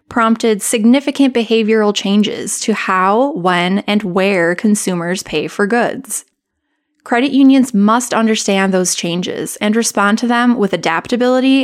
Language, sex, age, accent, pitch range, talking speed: English, female, 20-39, American, 185-235 Hz, 130 wpm